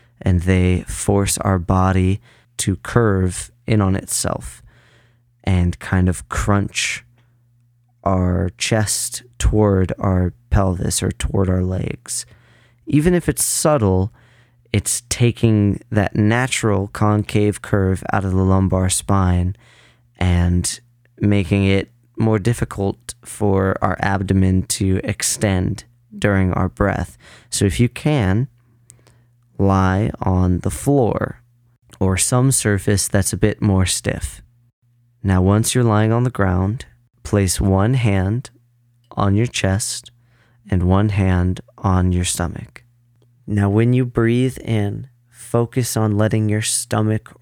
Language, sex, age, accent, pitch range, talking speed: English, male, 30-49, American, 95-120 Hz, 120 wpm